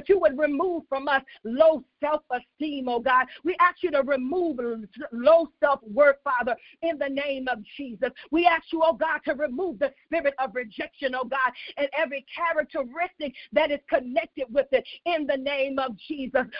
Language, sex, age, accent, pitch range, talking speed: English, female, 40-59, American, 280-335 Hz, 175 wpm